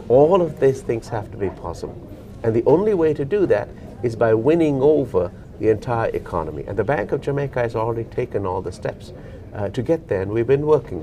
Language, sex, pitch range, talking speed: English, male, 100-125 Hz, 225 wpm